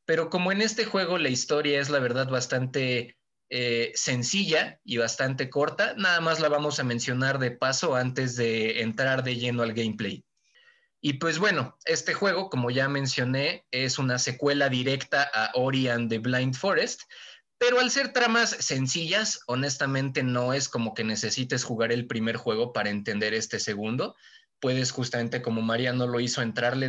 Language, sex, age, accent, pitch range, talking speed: Spanish, male, 20-39, Mexican, 120-165 Hz, 165 wpm